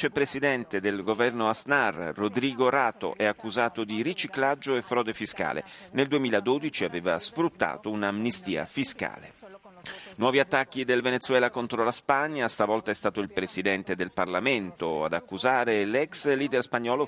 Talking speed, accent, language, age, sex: 135 wpm, native, Italian, 40-59, male